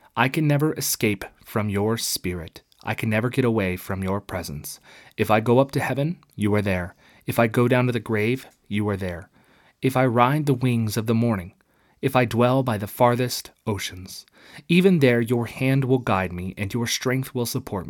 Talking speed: 205 wpm